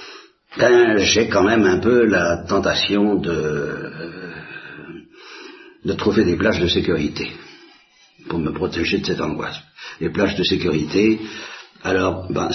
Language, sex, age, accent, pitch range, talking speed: Italian, male, 60-79, French, 90-115 Hz, 130 wpm